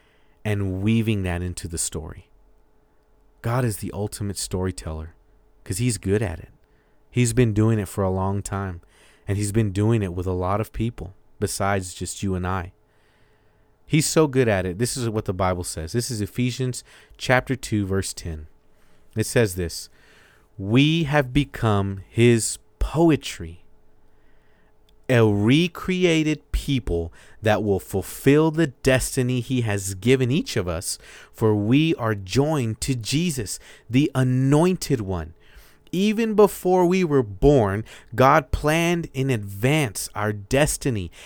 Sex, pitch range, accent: male, 95-135 Hz, American